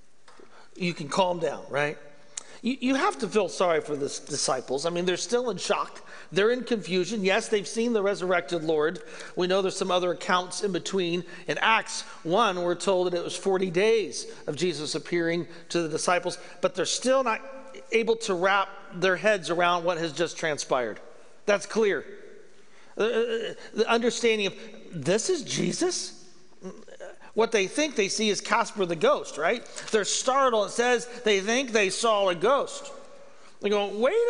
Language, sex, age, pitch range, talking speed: English, male, 40-59, 180-245 Hz, 175 wpm